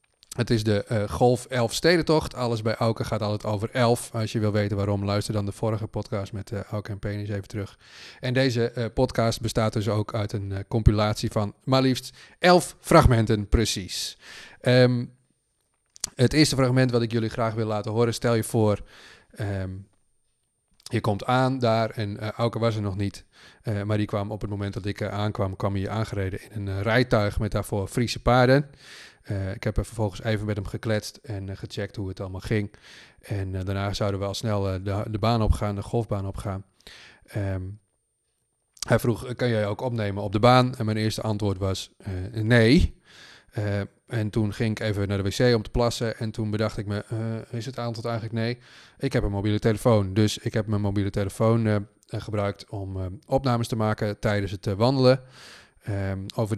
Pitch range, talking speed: 100-120 Hz, 200 wpm